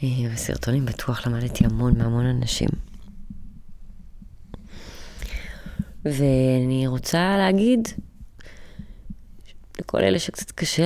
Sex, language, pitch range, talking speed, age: female, Hebrew, 130-170 Hz, 70 wpm, 20-39